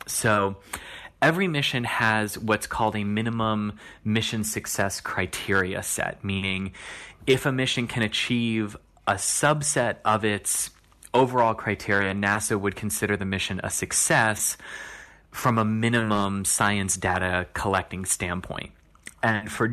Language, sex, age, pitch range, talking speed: English, male, 30-49, 95-115 Hz, 120 wpm